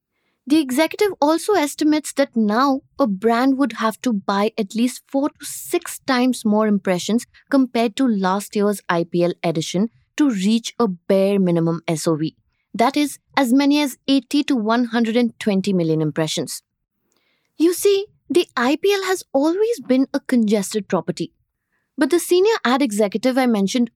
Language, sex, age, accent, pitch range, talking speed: English, female, 20-39, Indian, 195-280 Hz, 150 wpm